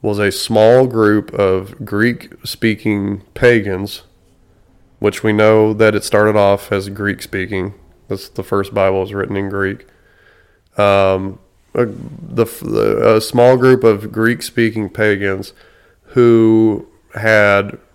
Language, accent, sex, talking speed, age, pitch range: English, American, male, 120 wpm, 20-39, 100-110 Hz